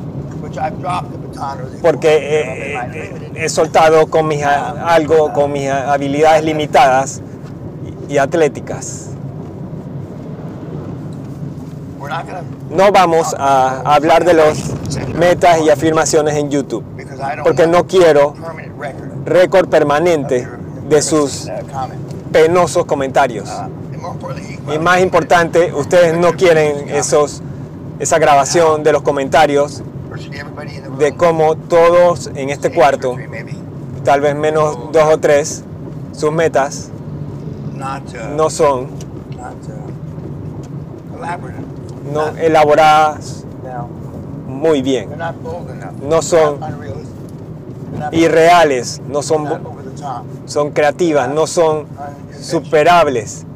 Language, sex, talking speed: Spanish, male, 85 wpm